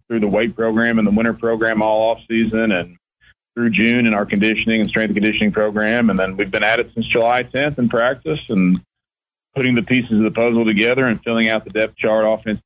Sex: male